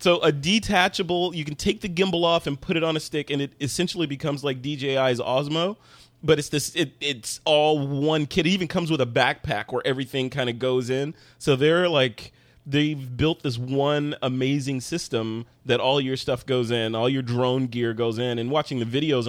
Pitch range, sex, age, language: 120-145 Hz, male, 30-49, English